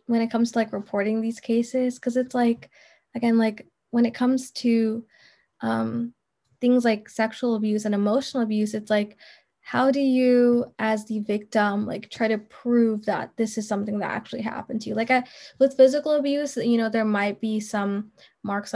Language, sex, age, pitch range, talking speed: English, female, 10-29, 215-240 Hz, 185 wpm